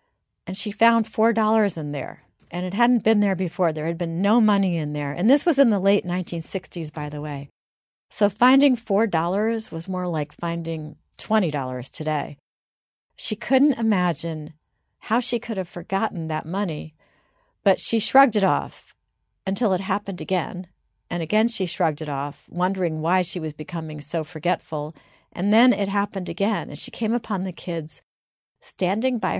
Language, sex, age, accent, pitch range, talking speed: English, female, 50-69, American, 165-215 Hz, 170 wpm